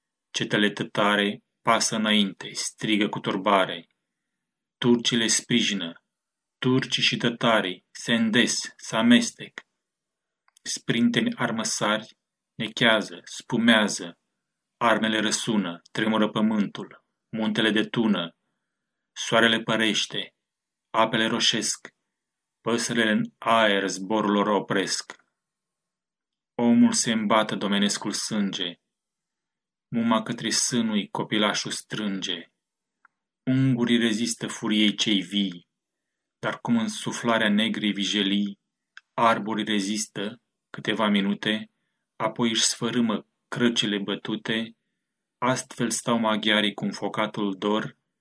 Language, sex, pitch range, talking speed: Romanian, male, 105-120 Hz, 90 wpm